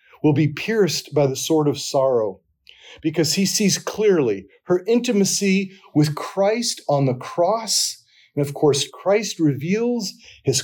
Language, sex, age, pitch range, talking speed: English, male, 40-59, 140-185 Hz, 140 wpm